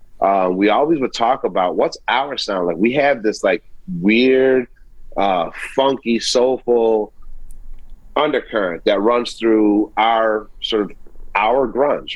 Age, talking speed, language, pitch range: 30-49, 135 wpm, English, 105-125 Hz